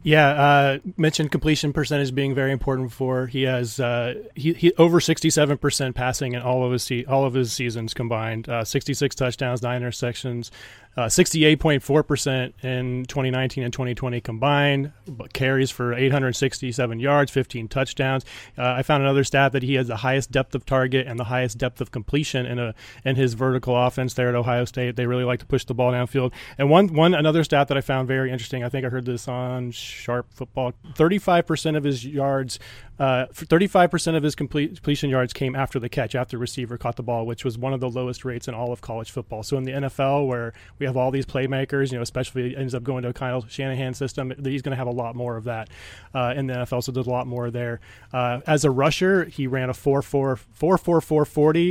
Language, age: English, 30-49